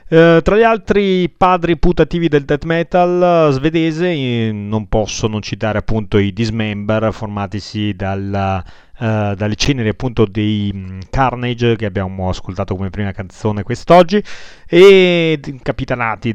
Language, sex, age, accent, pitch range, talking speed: Italian, male, 30-49, native, 105-140 Hz, 135 wpm